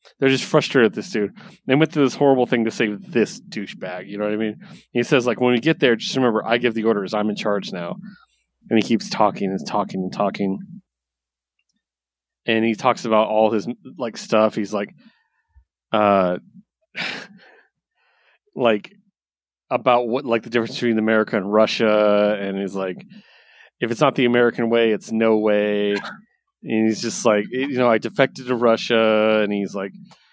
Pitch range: 105-120 Hz